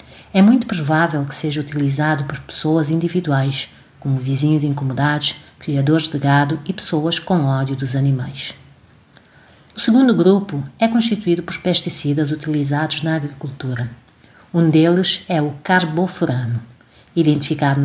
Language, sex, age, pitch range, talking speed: Portuguese, female, 50-69, 145-180 Hz, 125 wpm